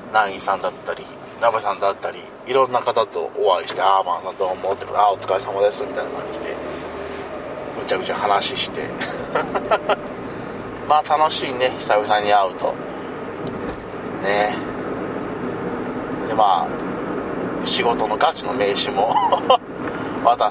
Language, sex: Japanese, male